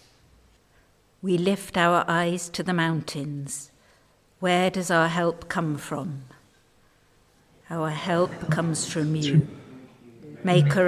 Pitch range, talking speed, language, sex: 155-185 Hz, 105 wpm, English, female